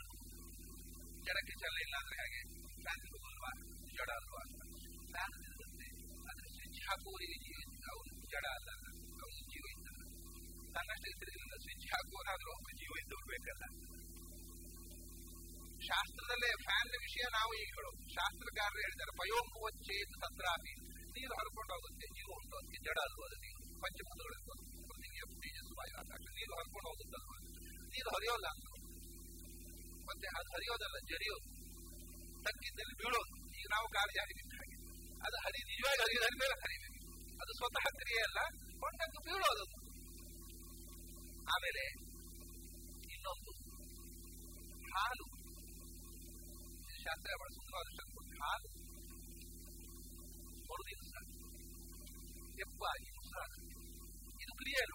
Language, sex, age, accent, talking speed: English, male, 50-69, Indian, 70 wpm